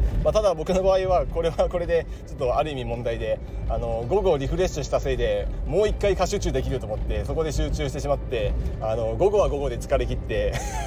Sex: male